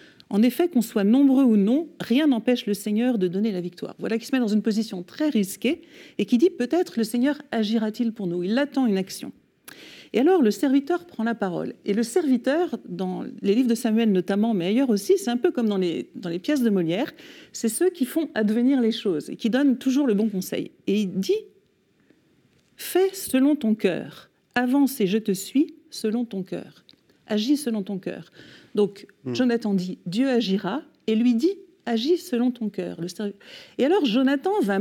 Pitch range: 205-280 Hz